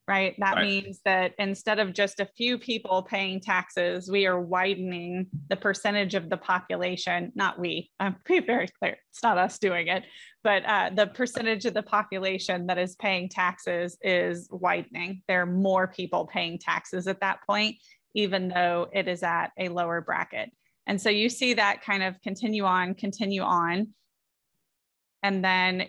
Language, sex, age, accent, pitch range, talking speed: English, female, 20-39, American, 185-205 Hz, 170 wpm